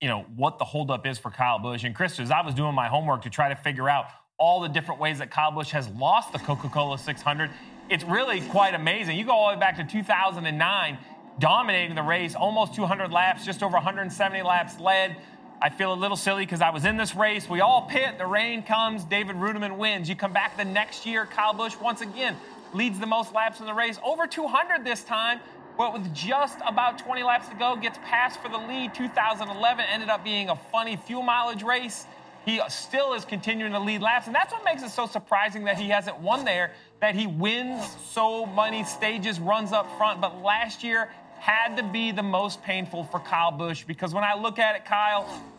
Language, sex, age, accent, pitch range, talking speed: English, male, 30-49, American, 175-225 Hz, 220 wpm